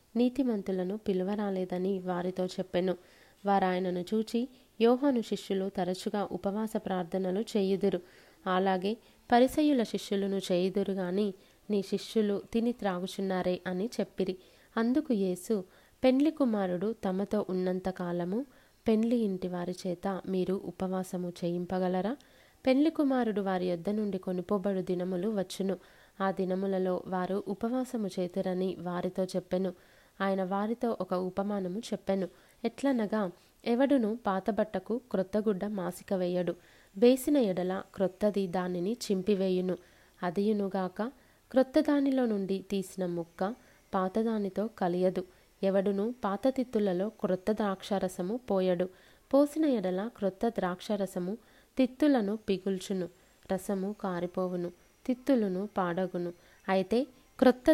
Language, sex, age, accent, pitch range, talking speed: Telugu, female, 20-39, native, 185-220 Hz, 100 wpm